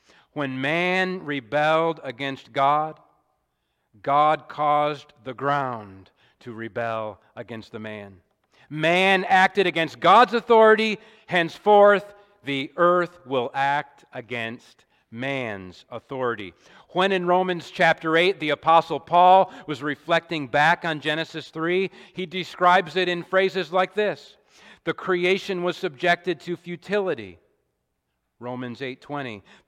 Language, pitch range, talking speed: English, 145-195 Hz, 115 wpm